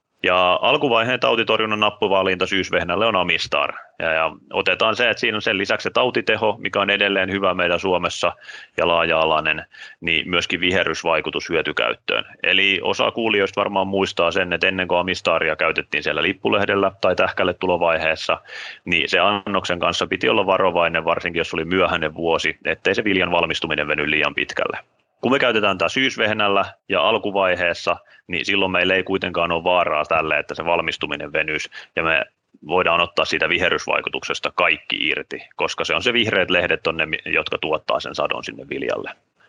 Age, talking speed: 30-49, 160 wpm